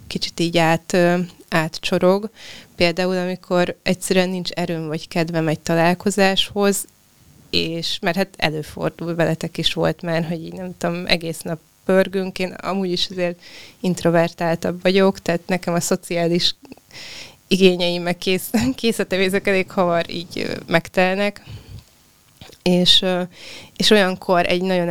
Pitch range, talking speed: 170-190 Hz, 115 wpm